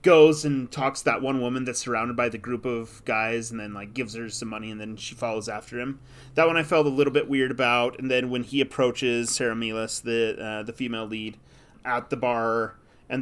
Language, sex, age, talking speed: English, male, 30-49, 230 wpm